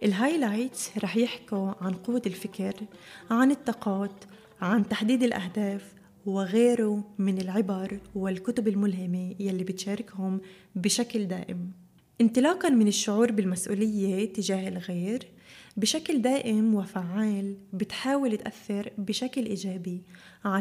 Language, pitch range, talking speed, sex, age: Arabic, 190-225 Hz, 100 wpm, female, 20-39